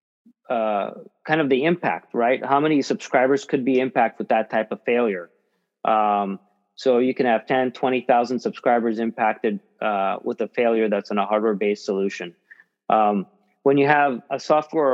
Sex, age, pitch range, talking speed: male, 40-59, 115-135 Hz, 160 wpm